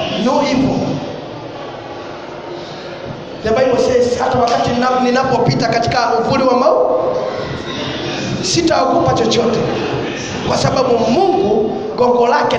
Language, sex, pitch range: English, male, 250-355 Hz